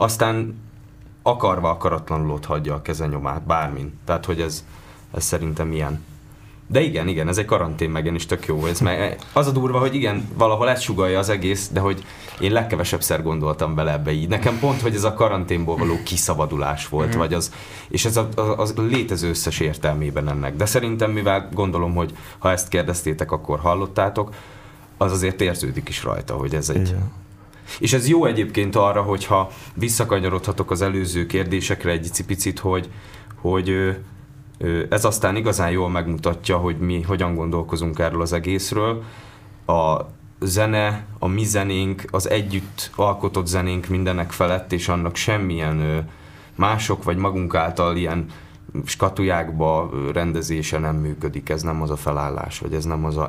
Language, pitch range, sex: Hungarian, 80-100 Hz, male